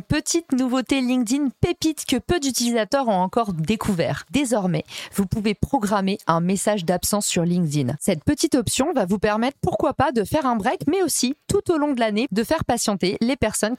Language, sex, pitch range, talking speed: French, female, 190-260 Hz, 185 wpm